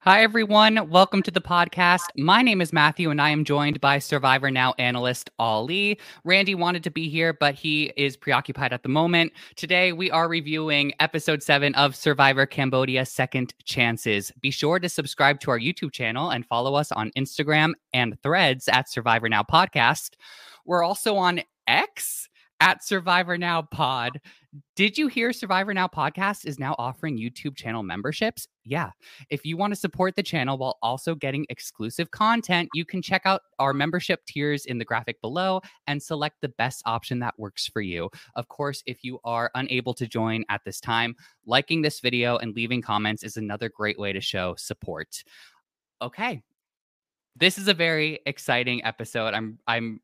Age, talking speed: 20-39, 175 wpm